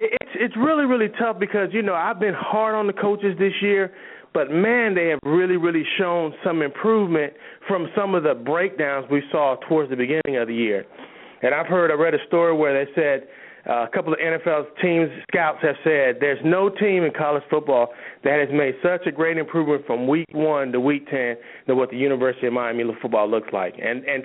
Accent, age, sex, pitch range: American, 30-49, male, 140-180 Hz